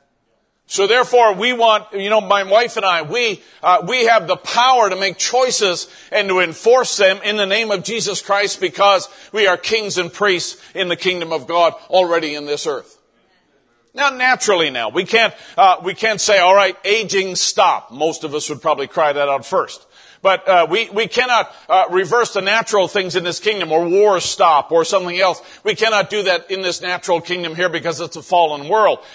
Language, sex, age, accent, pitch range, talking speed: English, male, 50-69, American, 180-230 Hz, 205 wpm